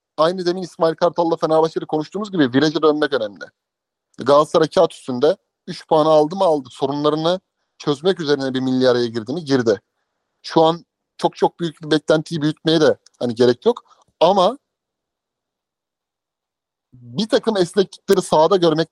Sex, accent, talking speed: male, native, 145 wpm